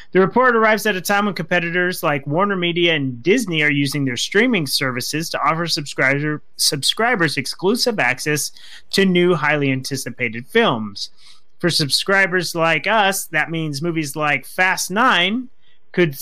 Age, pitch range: 30-49, 145-185 Hz